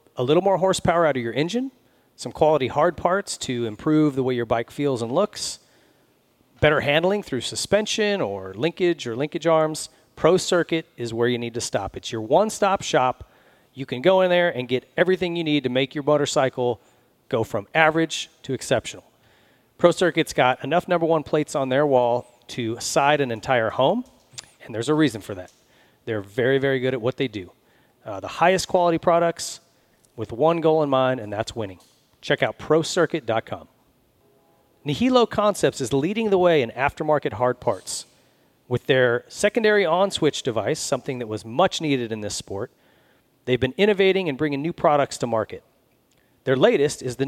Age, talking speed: 40-59, 180 wpm